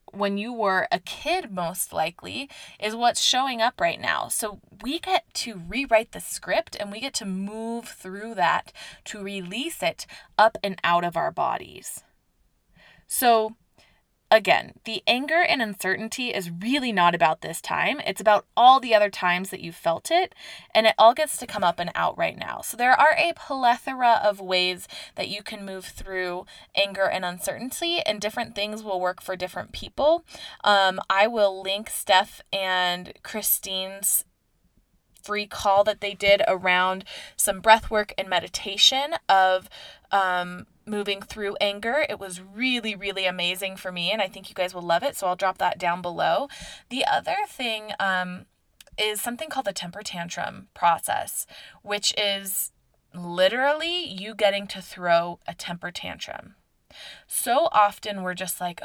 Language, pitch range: English, 185-240 Hz